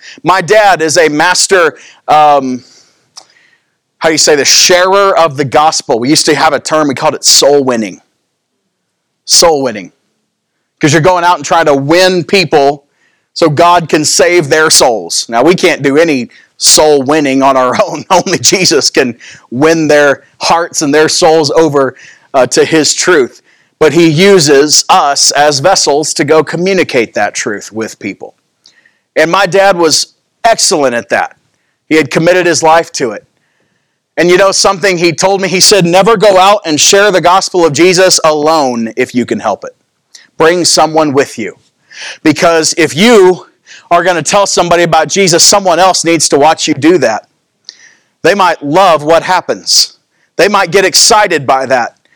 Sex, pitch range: male, 150-185 Hz